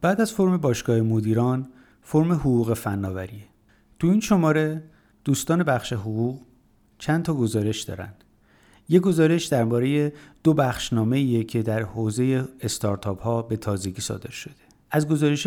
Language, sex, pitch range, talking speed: Persian, male, 110-140 Hz, 135 wpm